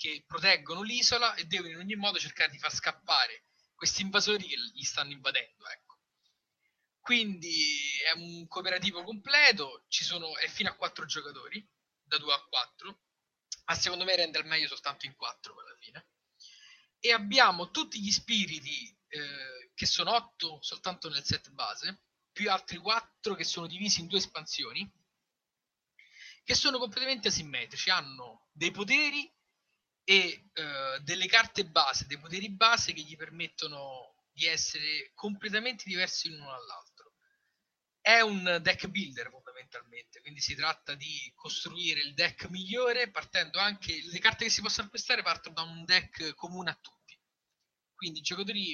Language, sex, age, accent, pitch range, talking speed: Italian, male, 30-49, native, 160-215 Hz, 150 wpm